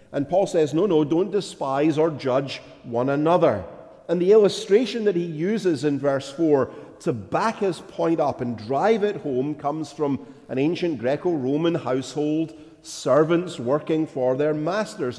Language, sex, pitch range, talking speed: English, male, 140-205 Hz, 160 wpm